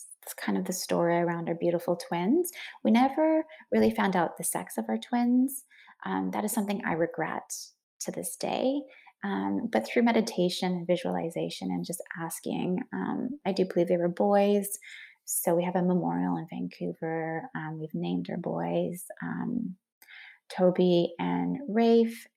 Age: 20-39